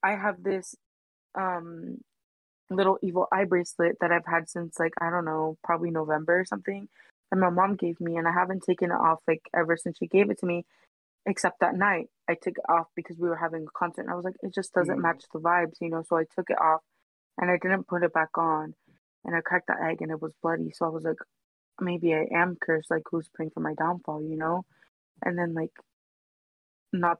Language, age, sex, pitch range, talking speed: English, 20-39, female, 160-180 Hz, 230 wpm